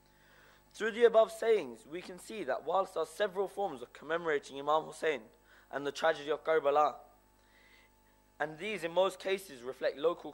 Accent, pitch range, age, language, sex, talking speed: British, 145-195 Hz, 20-39, English, male, 170 wpm